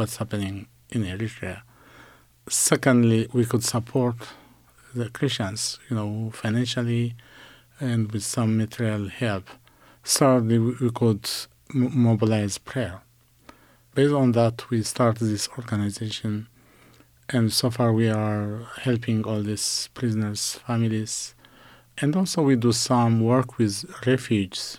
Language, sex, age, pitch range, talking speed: English, male, 50-69, 105-120 Hz, 115 wpm